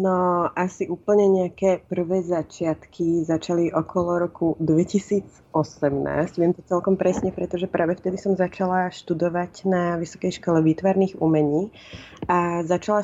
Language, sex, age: Slovak, female, 30-49